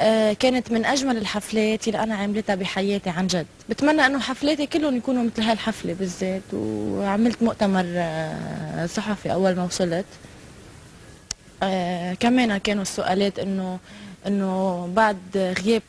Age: 20-39